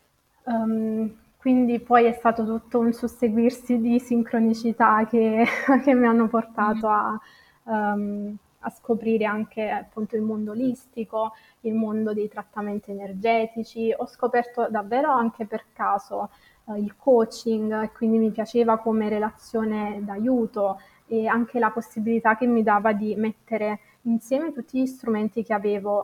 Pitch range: 215-235 Hz